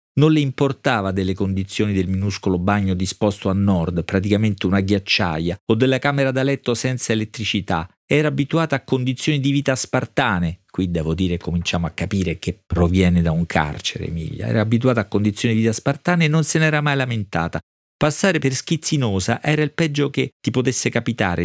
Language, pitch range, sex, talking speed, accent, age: Italian, 95-120 Hz, male, 175 wpm, native, 40-59